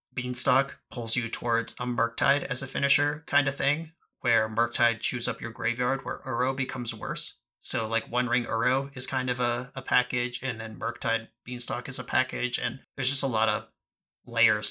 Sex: male